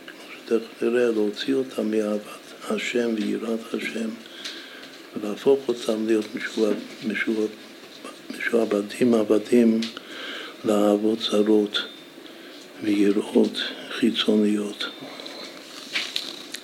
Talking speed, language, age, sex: 70 wpm, Hebrew, 60-79, male